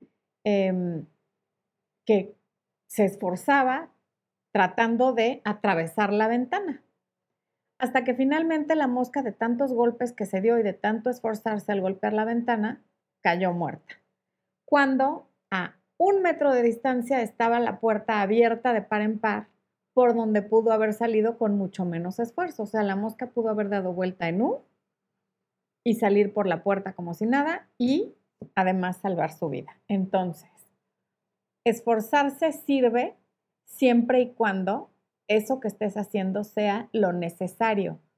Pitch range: 195-245 Hz